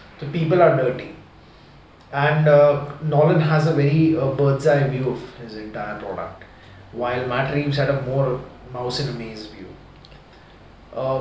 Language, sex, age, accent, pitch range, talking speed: Hindi, male, 20-39, native, 125-155 Hz, 160 wpm